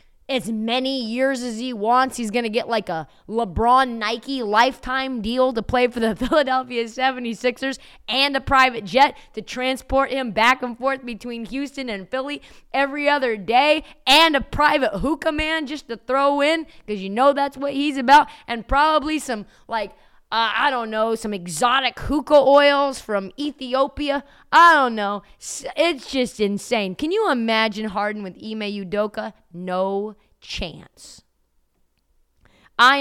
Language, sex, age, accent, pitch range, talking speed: English, female, 20-39, American, 195-275 Hz, 155 wpm